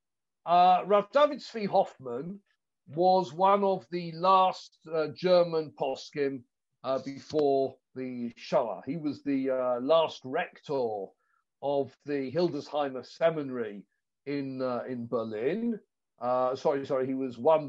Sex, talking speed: male, 125 wpm